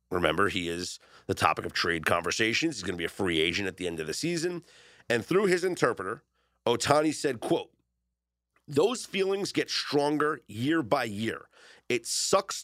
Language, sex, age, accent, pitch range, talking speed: English, male, 40-59, American, 105-165 Hz, 175 wpm